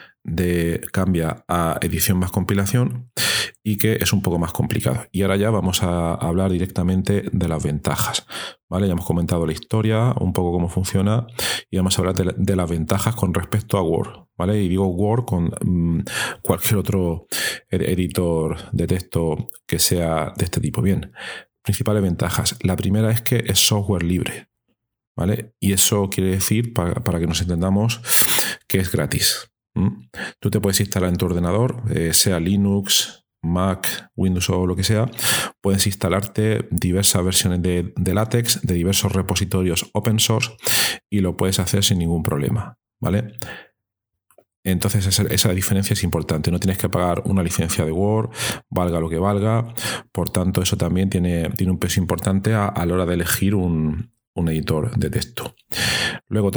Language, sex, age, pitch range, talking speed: Spanish, male, 40-59, 90-105 Hz, 170 wpm